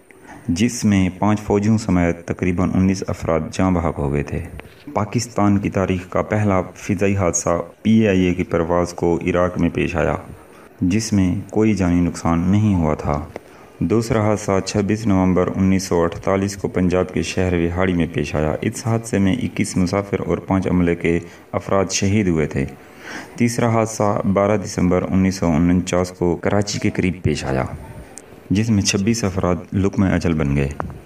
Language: Urdu